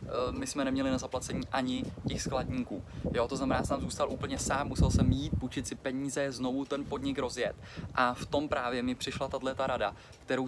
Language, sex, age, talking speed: Czech, male, 20-39, 200 wpm